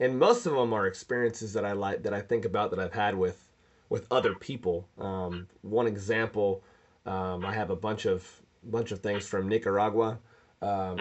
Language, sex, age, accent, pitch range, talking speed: English, male, 30-49, American, 95-120 Hz, 190 wpm